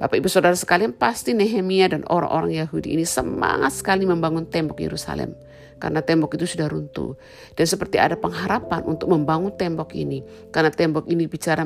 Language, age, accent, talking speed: Indonesian, 50-69, native, 165 wpm